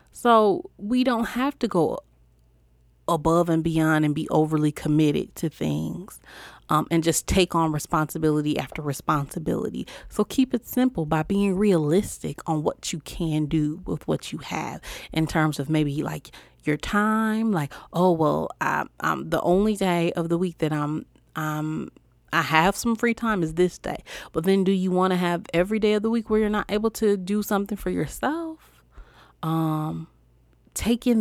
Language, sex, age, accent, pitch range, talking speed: English, female, 30-49, American, 155-200 Hz, 175 wpm